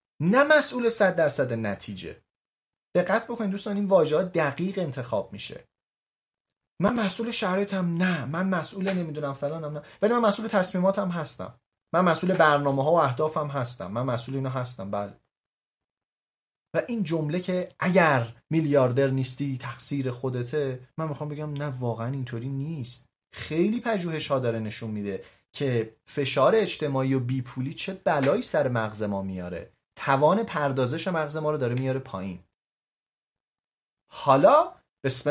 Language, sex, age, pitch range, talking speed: Persian, male, 30-49, 125-185 Hz, 140 wpm